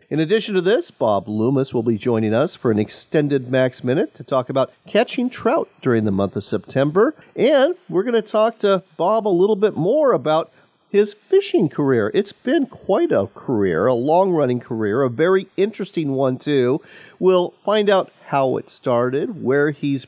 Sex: male